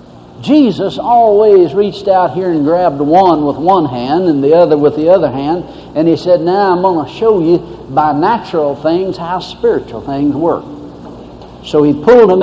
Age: 60-79